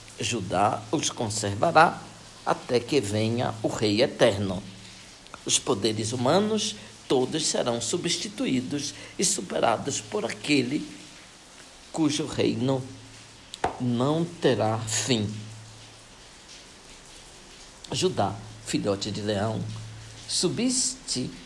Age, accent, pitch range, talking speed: 60-79, Brazilian, 105-155 Hz, 80 wpm